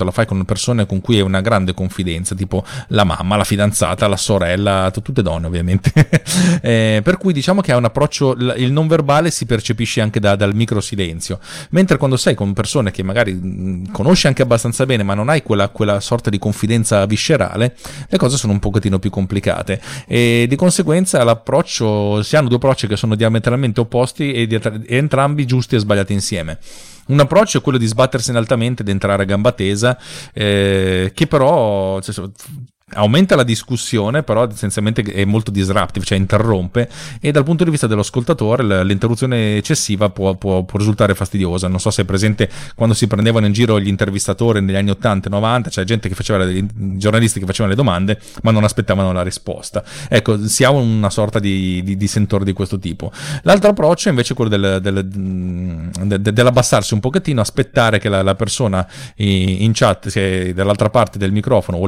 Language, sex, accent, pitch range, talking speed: Italian, male, native, 100-125 Hz, 180 wpm